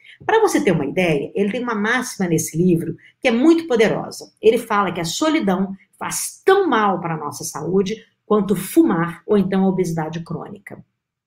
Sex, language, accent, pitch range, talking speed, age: female, Portuguese, Brazilian, 165-215 Hz, 175 wpm, 50-69